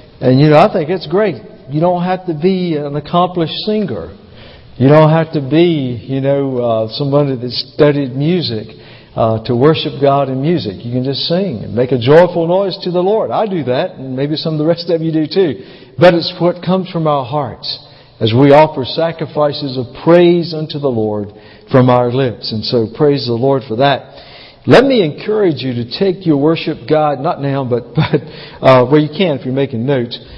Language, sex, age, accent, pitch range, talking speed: English, male, 60-79, American, 130-170 Hz, 205 wpm